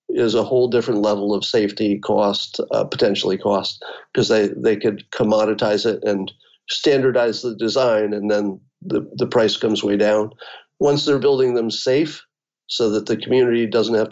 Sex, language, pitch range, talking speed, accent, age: male, English, 110-145 Hz, 170 wpm, American, 50-69